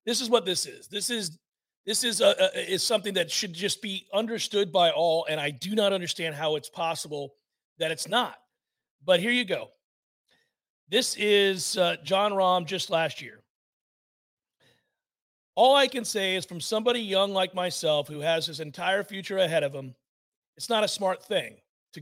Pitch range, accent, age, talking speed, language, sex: 175-230 Hz, American, 40-59, 180 wpm, English, male